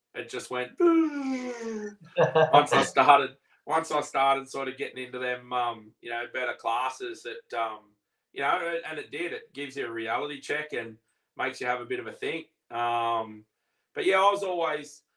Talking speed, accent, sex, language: 185 wpm, Australian, male, English